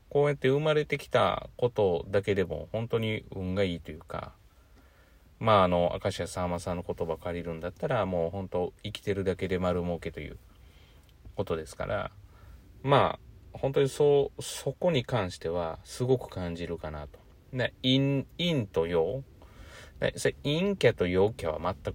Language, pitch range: Japanese, 85-120 Hz